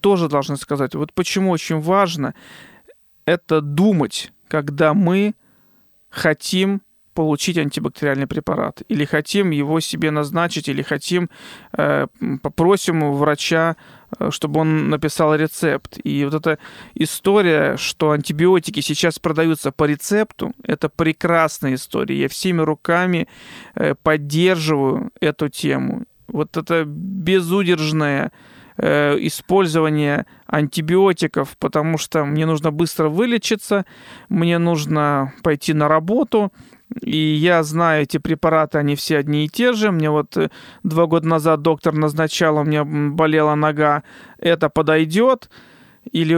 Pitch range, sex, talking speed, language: 150-180 Hz, male, 115 wpm, Russian